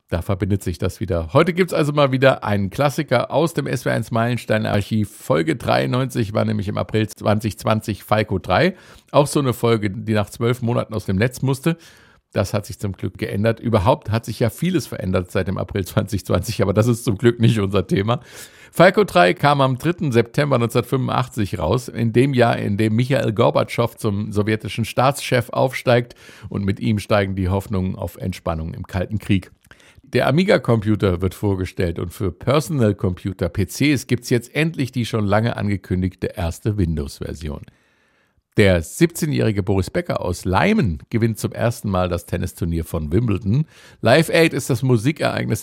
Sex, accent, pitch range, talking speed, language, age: male, German, 100-125 Hz, 165 wpm, German, 50-69